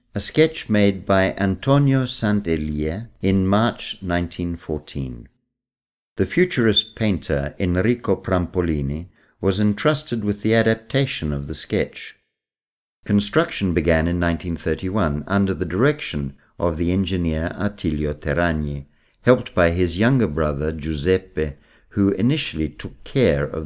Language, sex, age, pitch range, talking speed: Italian, male, 50-69, 80-115 Hz, 115 wpm